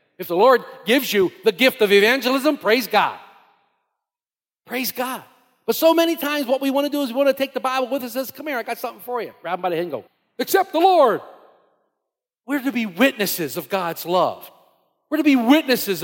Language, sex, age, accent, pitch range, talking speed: English, male, 50-69, American, 195-285 Hz, 230 wpm